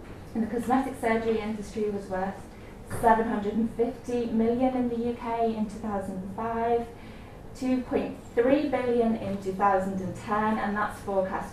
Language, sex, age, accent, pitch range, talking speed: English, female, 20-39, British, 185-225 Hz, 110 wpm